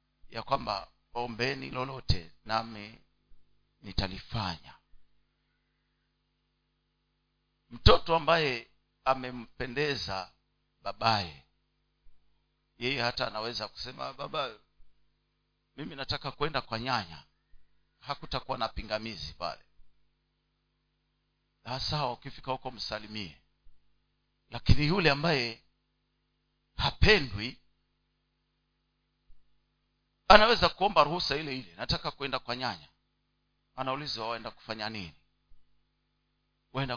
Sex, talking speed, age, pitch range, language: male, 75 wpm, 50-69, 95-135 Hz, Swahili